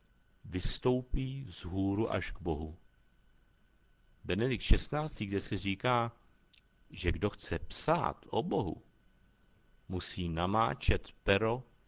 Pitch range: 90-125 Hz